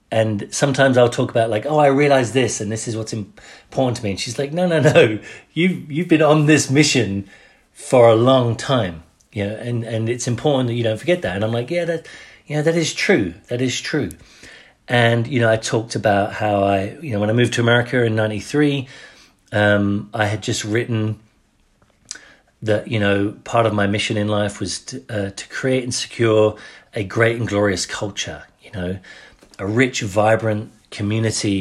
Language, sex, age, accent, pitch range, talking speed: English, male, 40-59, British, 105-130 Hz, 200 wpm